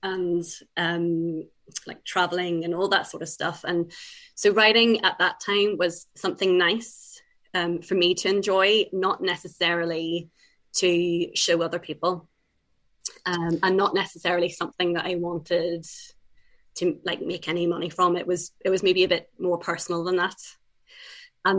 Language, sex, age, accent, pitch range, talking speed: English, female, 20-39, British, 175-205 Hz, 155 wpm